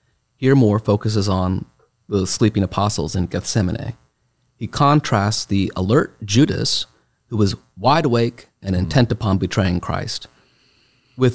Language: English